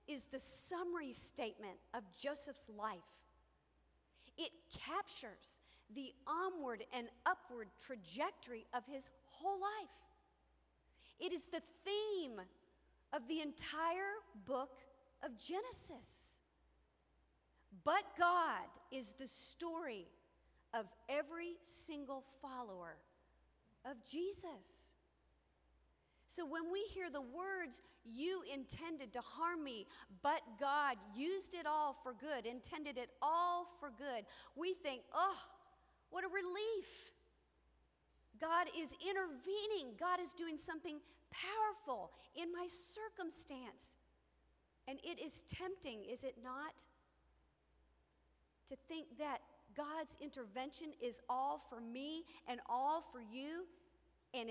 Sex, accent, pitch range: female, American, 240-345 Hz